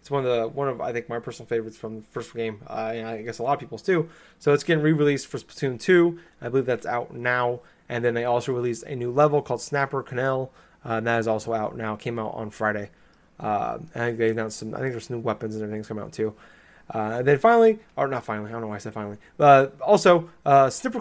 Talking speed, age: 265 wpm, 20-39